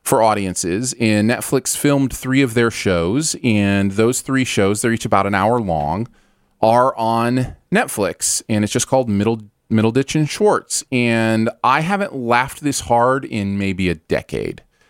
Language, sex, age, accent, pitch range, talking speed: English, male, 30-49, American, 100-130 Hz, 165 wpm